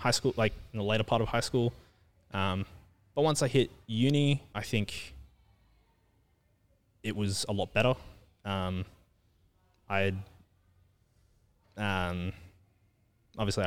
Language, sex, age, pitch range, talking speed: English, male, 20-39, 90-105 Hz, 120 wpm